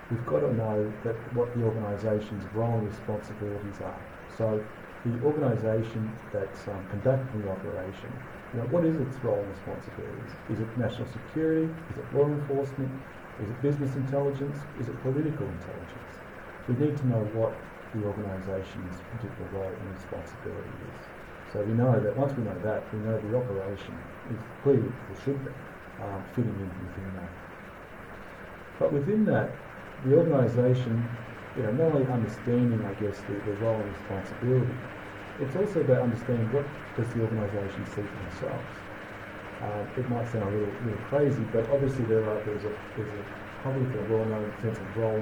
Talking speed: 170 wpm